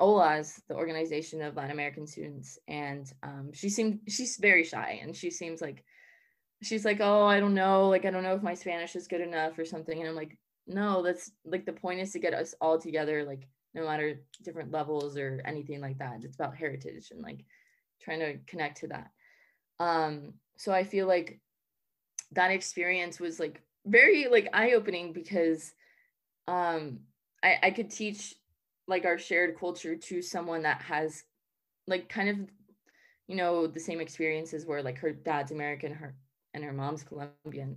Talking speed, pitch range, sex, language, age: 180 wpm, 150-185 Hz, female, English, 20-39